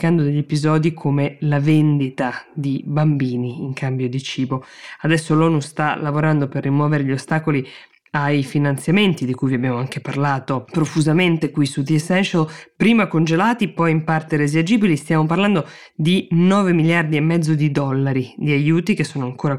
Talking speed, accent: 160 wpm, native